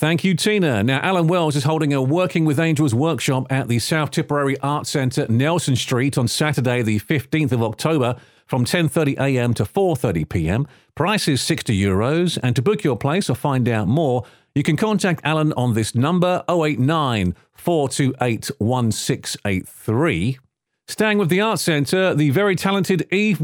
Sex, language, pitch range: male, English, 130-175 Hz